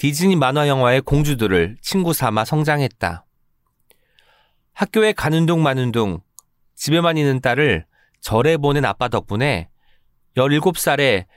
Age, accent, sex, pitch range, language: 30-49, native, male, 115-165 Hz, Korean